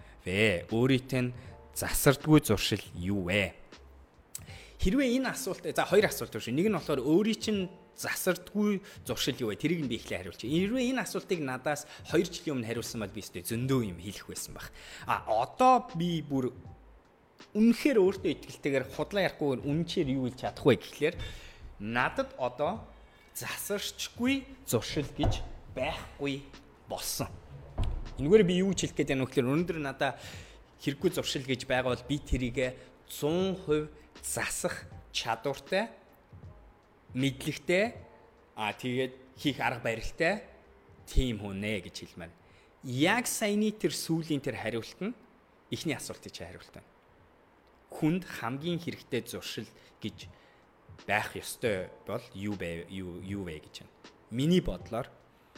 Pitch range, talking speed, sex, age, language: 110-175 Hz, 115 wpm, male, 30-49, English